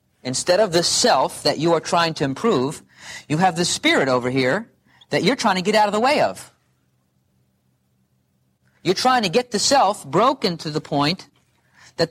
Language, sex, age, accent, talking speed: English, male, 40-59, American, 185 wpm